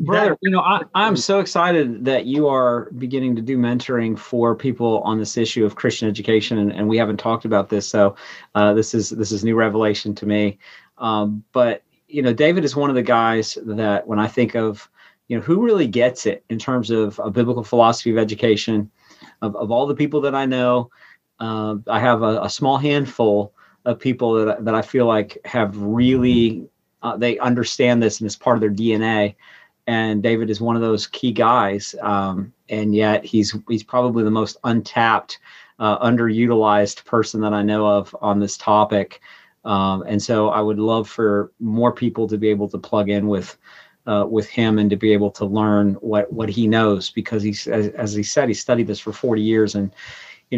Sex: male